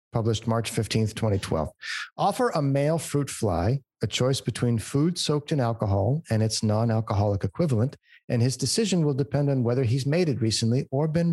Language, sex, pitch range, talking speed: English, male, 110-140 Hz, 175 wpm